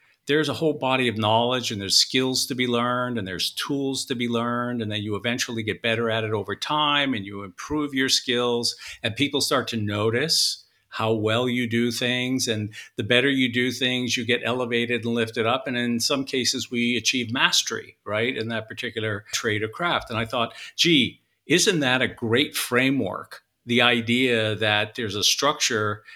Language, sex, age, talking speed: English, male, 50-69, 195 wpm